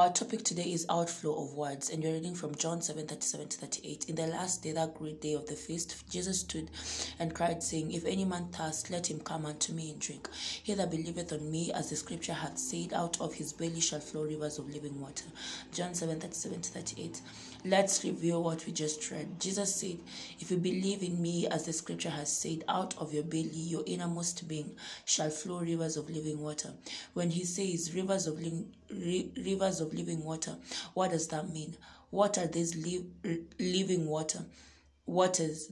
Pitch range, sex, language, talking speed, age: 155-175 Hz, female, English, 190 wpm, 20-39